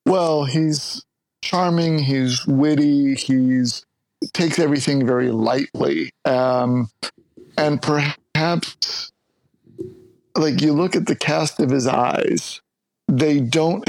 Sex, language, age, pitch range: male, English, 50-69, 125-145 Hz